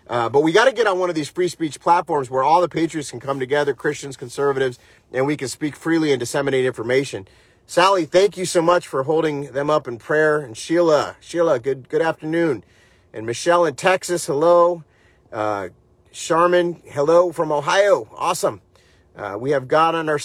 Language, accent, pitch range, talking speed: English, American, 135-165 Hz, 190 wpm